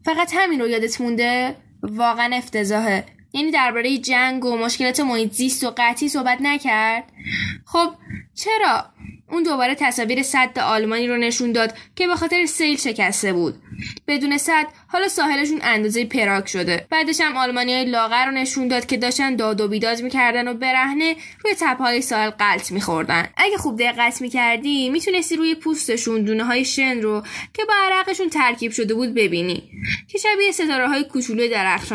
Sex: female